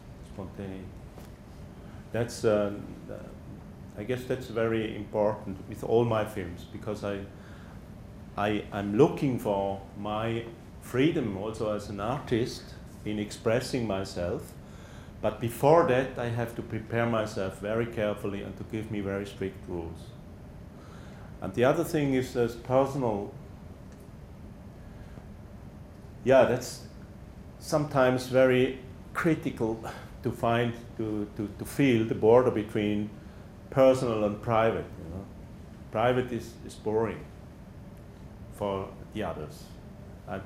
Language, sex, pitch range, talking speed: English, male, 100-125 Hz, 115 wpm